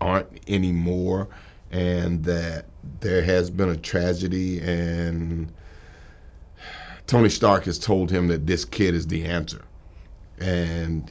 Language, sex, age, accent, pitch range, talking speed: English, male, 50-69, American, 85-140 Hz, 120 wpm